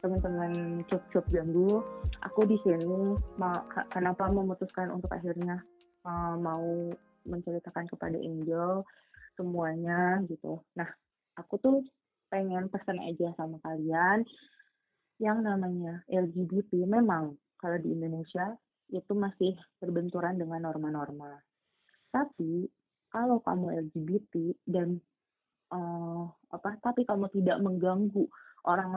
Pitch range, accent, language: 175-210 Hz, native, Indonesian